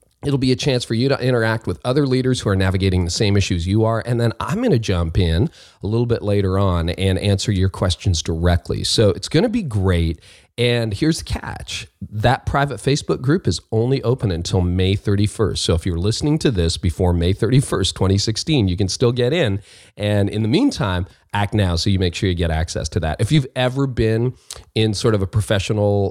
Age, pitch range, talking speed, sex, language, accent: 40-59, 95-125 Hz, 220 wpm, male, English, American